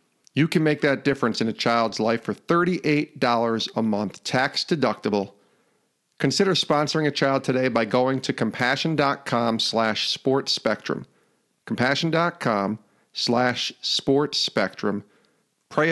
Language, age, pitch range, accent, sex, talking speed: English, 50-69, 120-150 Hz, American, male, 125 wpm